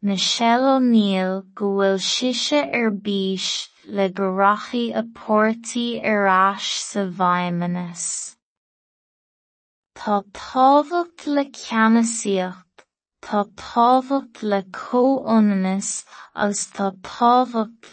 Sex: female